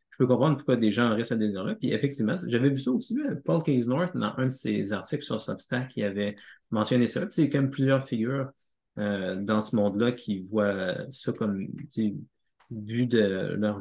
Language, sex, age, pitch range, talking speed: French, male, 30-49, 110-140 Hz, 210 wpm